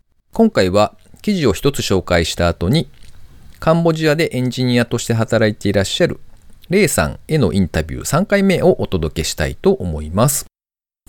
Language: Japanese